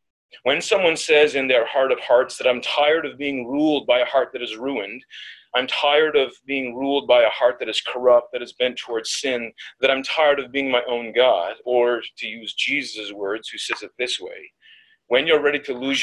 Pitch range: 120-160 Hz